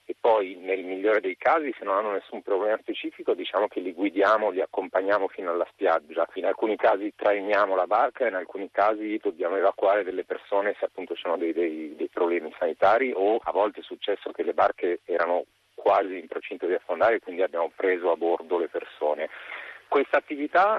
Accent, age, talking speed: native, 40-59, 195 wpm